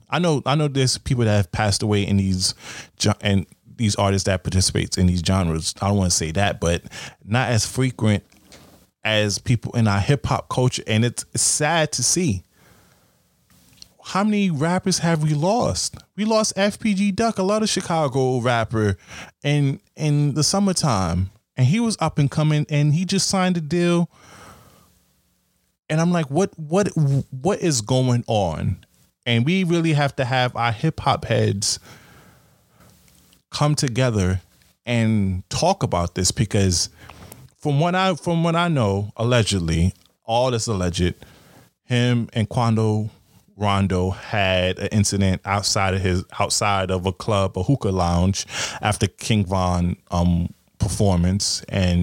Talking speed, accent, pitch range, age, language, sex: 155 wpm, American, 95-145 Hz, 20-39, English, male